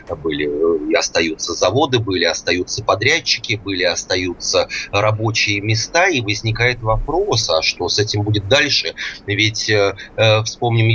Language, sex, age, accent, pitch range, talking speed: Russian, male, 30-49, native, 95-120 Hz, 125 wpm